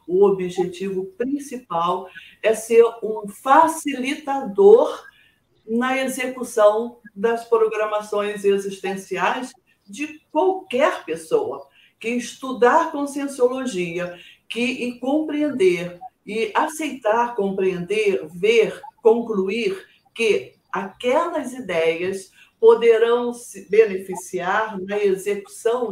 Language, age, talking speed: Portuguese, 50-69, 80 wpm